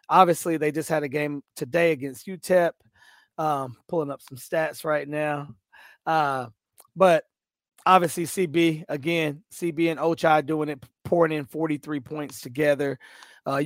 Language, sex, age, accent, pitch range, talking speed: English, male, 30-49, American, 145-165 Hz, 140 wpm